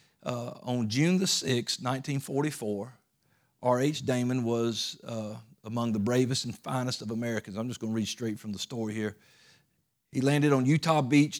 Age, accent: 50-69, American